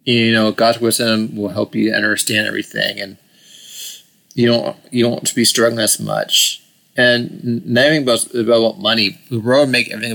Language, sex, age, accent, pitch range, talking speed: English, male, 30-49, American, 115-140 Hz, 175 wpm